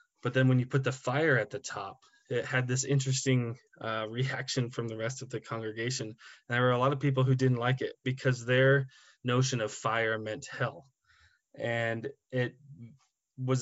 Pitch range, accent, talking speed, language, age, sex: 115-130 Hz, American, 190 wpm, English, 20-39, male